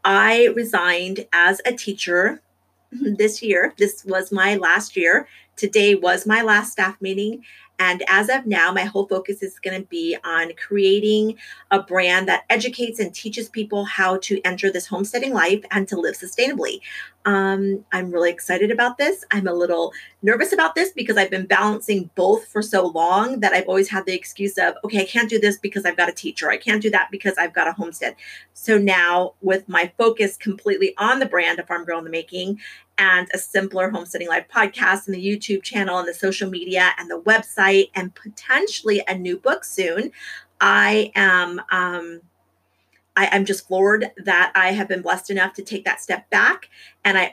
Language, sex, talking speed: English, female, 195 wpm